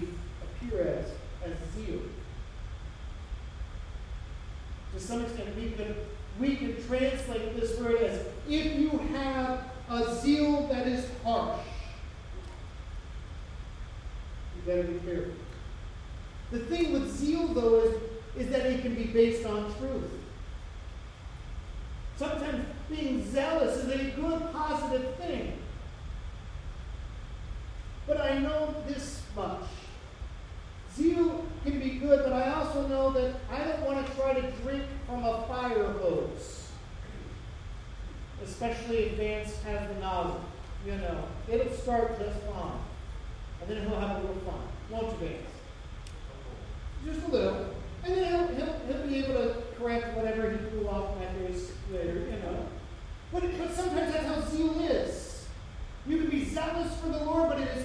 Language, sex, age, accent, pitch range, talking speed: English, male, 40-59, American, 180-290 Hz, 135 wpm